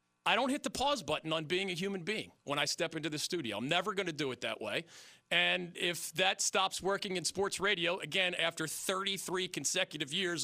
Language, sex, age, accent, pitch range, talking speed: English, male, 40-59, American, 150-195 Hz, 220 wpm